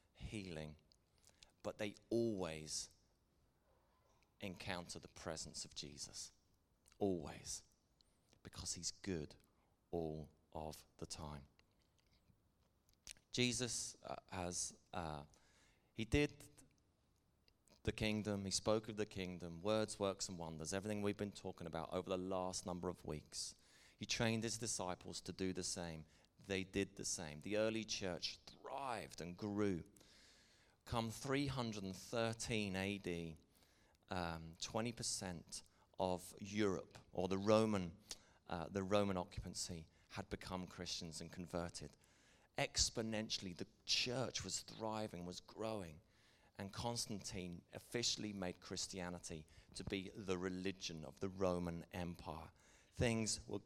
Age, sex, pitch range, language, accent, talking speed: 30-49, male, 85-105 Hz, English, British, 115 wpm